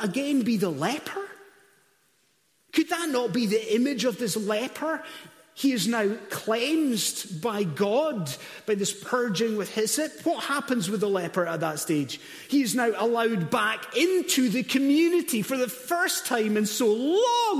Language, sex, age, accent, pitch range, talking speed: English, male, 30-49, British, 185-275 Hz, 160 wpm